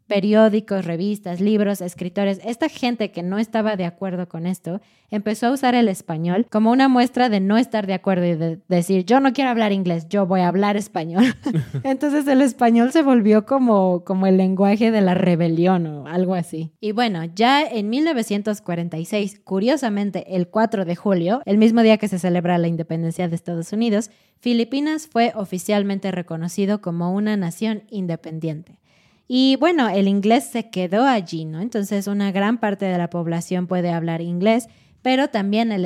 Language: Spanish